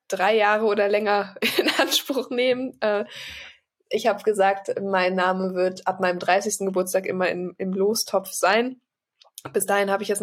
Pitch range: 185-205 Hz